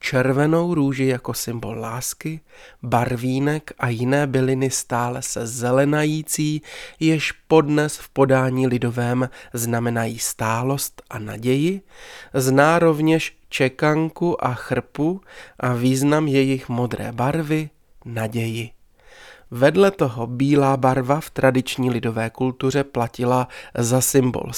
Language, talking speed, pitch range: Czech, 105 wpm, 120-145 Hz